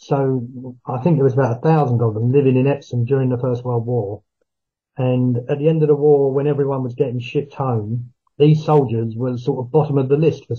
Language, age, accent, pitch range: English, 40-59, British, 120-140 Hz